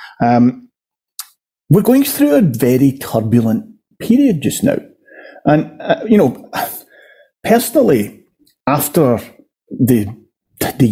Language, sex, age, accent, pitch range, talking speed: English, male, 40-59, British, 110-155 Hz, 100 wpm